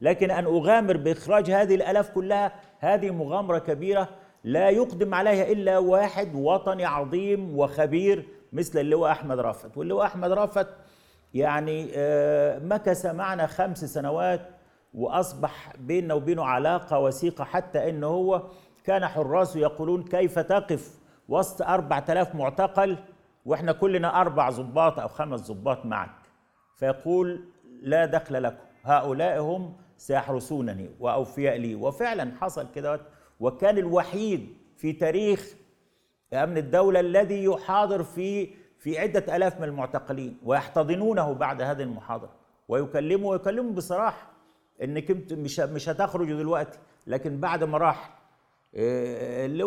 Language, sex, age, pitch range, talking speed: Arabic, male, 50-69, 150-190 Hz, 115 wpm